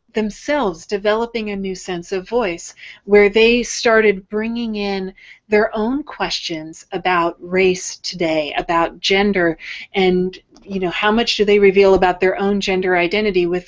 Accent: American